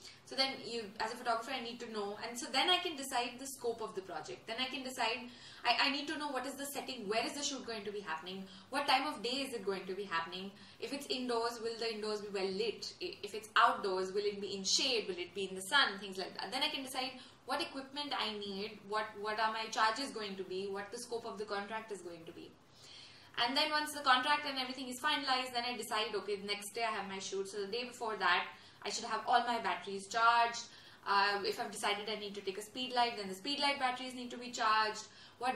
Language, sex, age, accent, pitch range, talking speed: English, female, 20-39, Indian, 200-255 Hz, 265 wpm